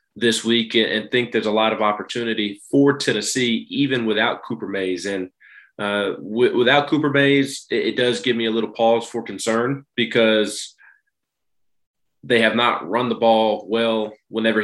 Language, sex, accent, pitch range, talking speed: English, male, American, 110-130 Hz, 160 wpm